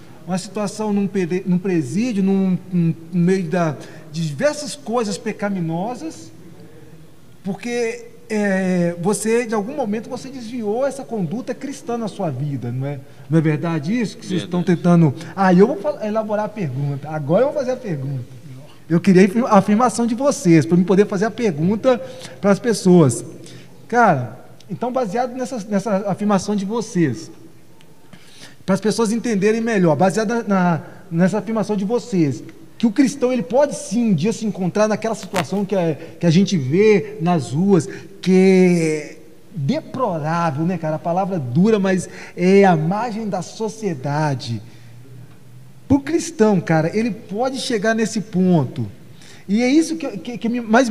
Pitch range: 165-225 Hz